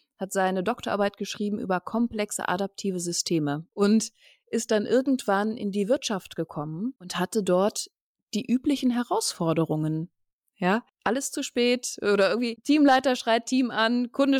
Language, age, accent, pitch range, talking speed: German, 20-39, German, 195-245 Hz, 135 wpm